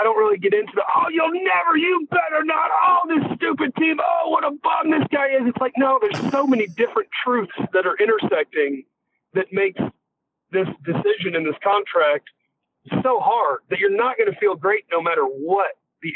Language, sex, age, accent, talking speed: English, male, 40-59, American, 205 wpm